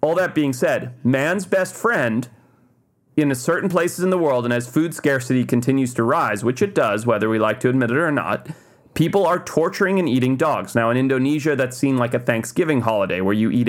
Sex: male